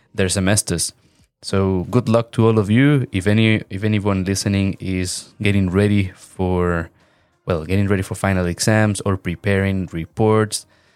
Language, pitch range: English, 95-125 Hz